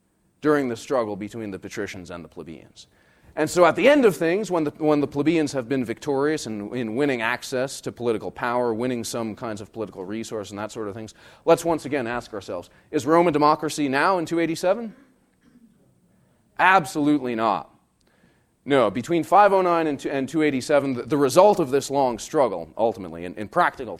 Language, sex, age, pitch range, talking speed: English, male, 30-49, 105-155 Hz, 185 wpm